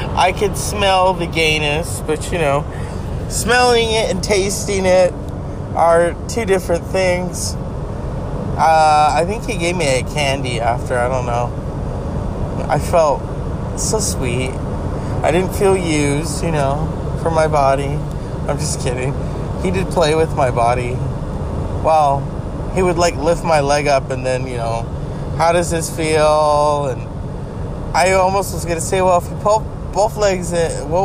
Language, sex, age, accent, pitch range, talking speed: English, male, 20-39, American, 135-180 Hz, 160 wpm